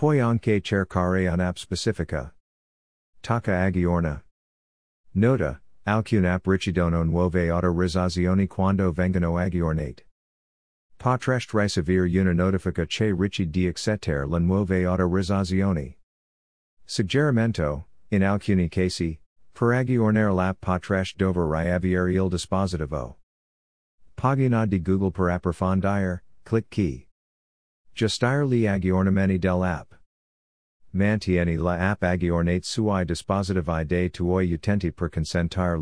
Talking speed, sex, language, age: 100 wpm, male, Italian, 50-69